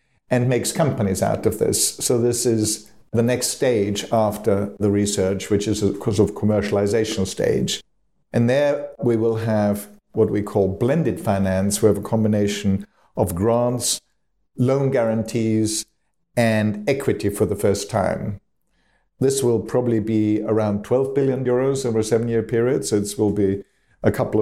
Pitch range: 100-115 Hz